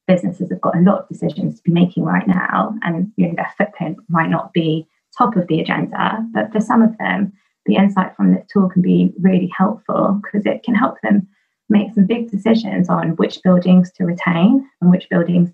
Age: 20-39